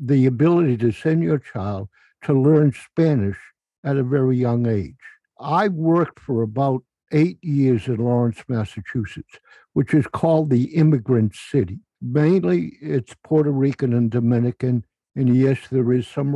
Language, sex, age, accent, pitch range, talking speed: English, male, 60-79, American, 125-160 Hz, 145 wpm